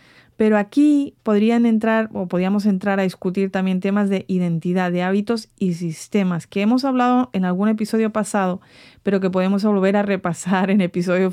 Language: English